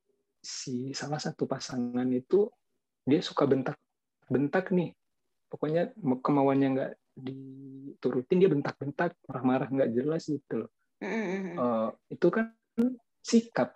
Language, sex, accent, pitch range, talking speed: Indonesian, male, native, 130-165 Hz, 105 wpm